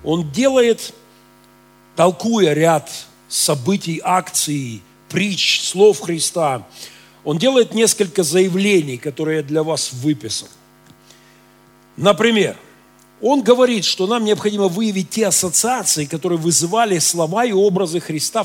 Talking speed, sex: 105 wpm, male